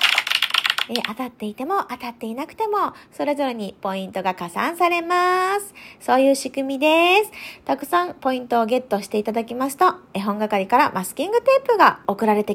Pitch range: 215-350 Hz